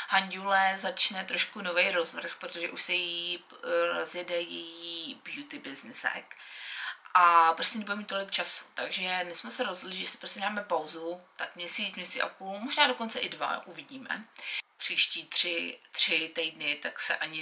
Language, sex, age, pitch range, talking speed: Czech, female, 30-49, 165-195 Hz, 160 wpm